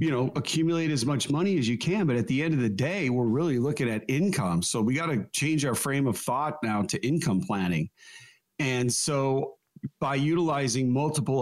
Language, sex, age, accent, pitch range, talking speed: English, male, 40-59, American, 115-150 Hz, 205 wpm